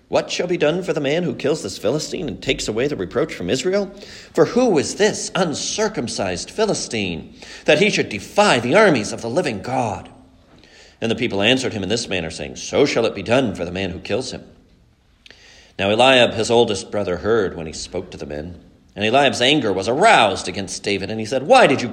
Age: 50-69